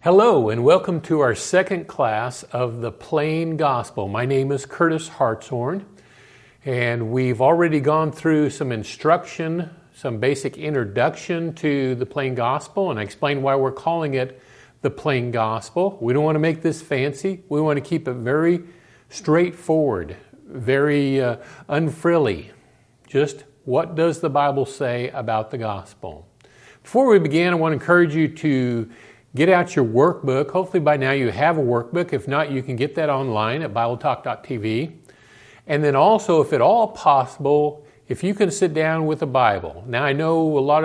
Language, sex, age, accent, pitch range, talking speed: English, male, 50-69, American, 125-155 Hz, 170 wpm